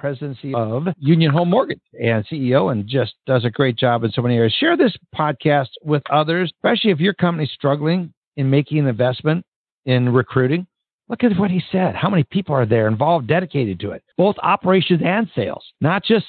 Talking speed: 200 wpm